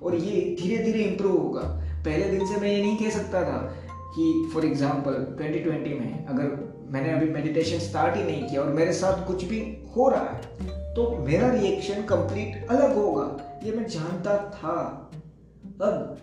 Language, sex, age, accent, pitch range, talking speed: Hindi, male, 20-39, native, 145-190 Hz, 175 wpm